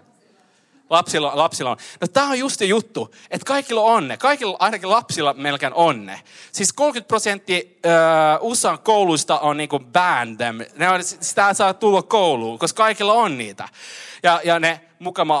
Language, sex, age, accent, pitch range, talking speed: Finnish, male, 30-49, native, 150-210 Hz, 160 wpm